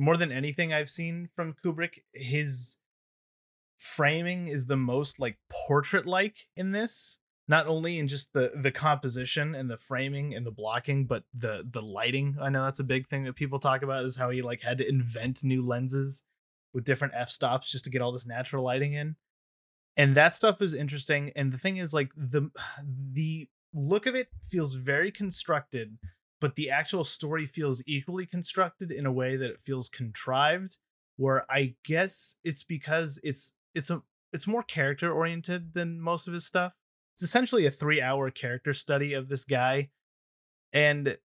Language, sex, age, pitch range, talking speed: English, male, 20-39, 130-160 Hz, 180 wpm